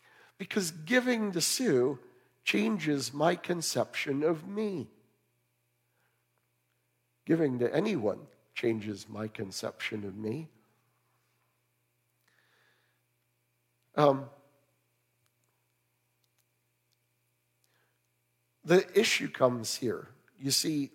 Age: 50-69